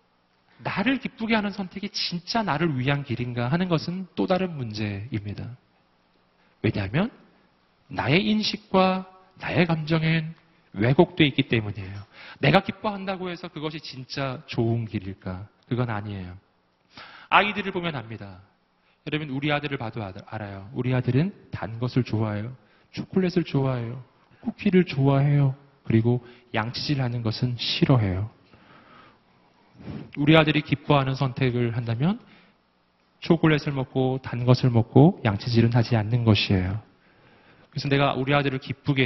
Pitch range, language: 110-175 Hz, Korean